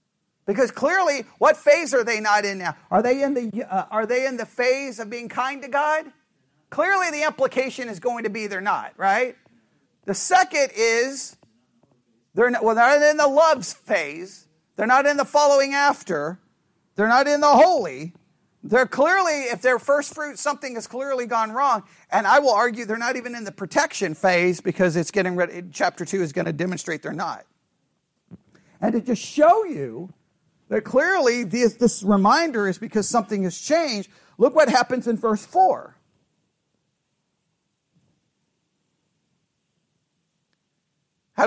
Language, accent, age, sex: English, American, 40-59, male